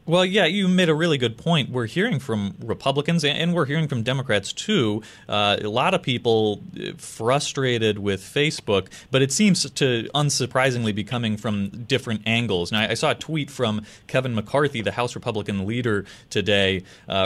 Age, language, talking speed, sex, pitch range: 30-49, English, 175 wpm, male, 100-125 Hz